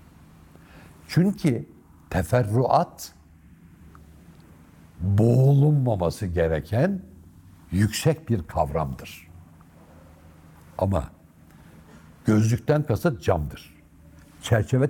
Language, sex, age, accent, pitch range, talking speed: Turkish, male, 60-79, native, 80-115 Hz, 50 wpm